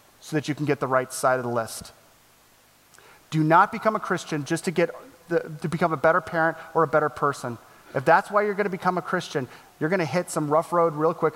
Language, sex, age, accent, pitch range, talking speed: English, male, 30-49, American, 135-170 Hz, 230 wpm